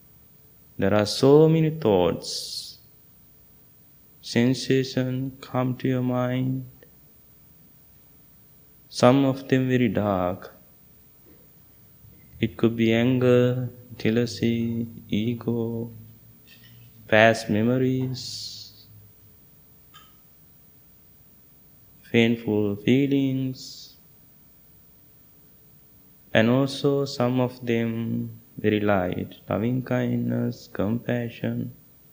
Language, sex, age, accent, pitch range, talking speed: English, male, 20-39, Indian, 105-125 Hz, 65 wpm